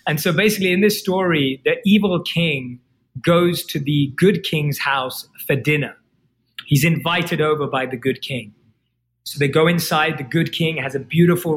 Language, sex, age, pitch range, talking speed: English, male, 20-39, 140-175 Hz, 175 wpm